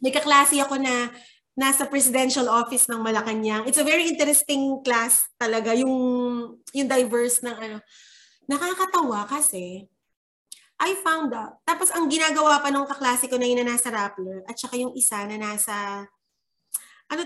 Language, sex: Filipino, female